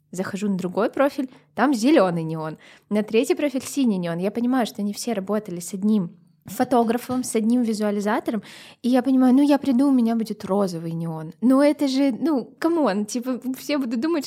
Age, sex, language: 20-39, female, Russian